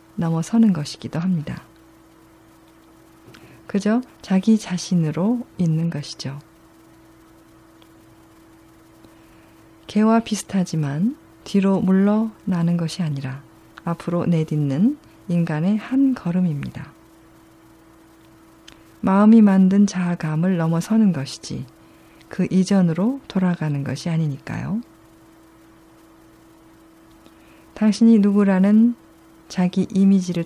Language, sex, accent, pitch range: Korean, female, native, 160-200 Hz